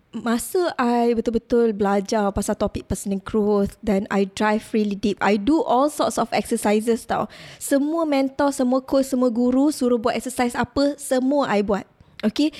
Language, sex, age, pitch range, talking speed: Malay, female, 20-39, 220-285 Hz, 160 wpm